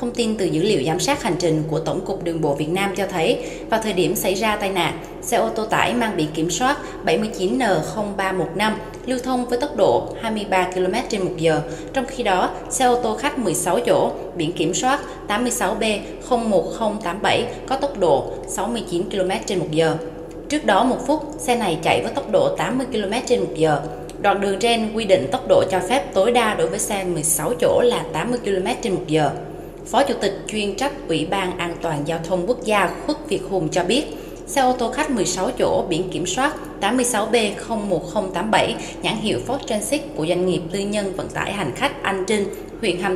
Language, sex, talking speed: Vietnamese, female, 205 wpm